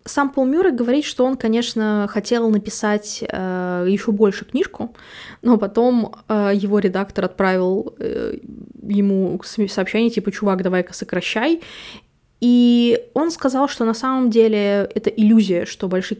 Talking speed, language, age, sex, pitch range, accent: 135 wpm, Russian, 20-39, female, 195-240 Hz, native